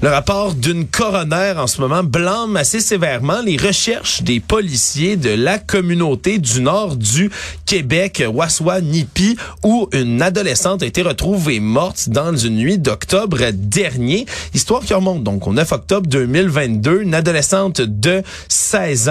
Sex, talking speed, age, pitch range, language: male, 150 wpm, 30-49, 130-190 Hz, French